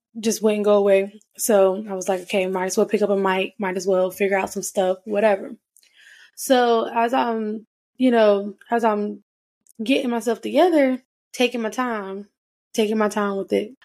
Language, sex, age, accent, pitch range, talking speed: English, female, 10-29, American, 195-230 Hz, 180 wpm